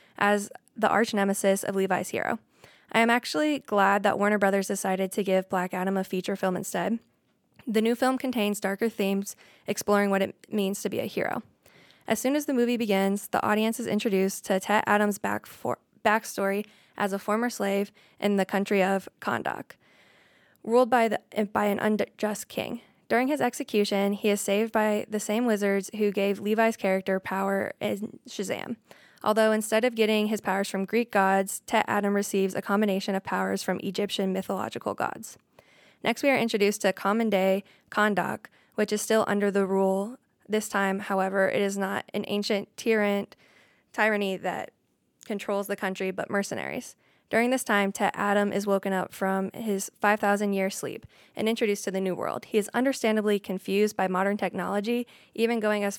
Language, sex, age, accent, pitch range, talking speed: English, female, 10-29, American, 195-215 Hz, 175 wpm